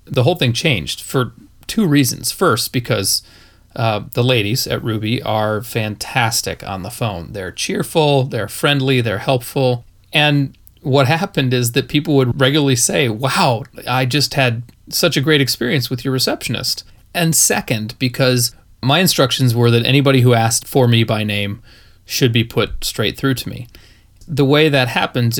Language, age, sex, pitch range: English, 30-49, male, 110-135 Hz